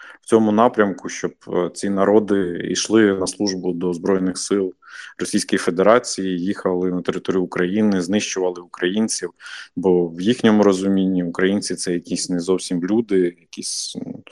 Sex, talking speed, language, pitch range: male, 135 wpm, Ukrainian, 90-110 Hz